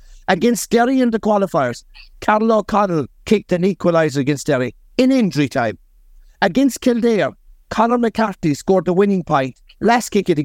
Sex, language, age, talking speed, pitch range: male, English, 60-79, 155 wpm, 140-210 Hz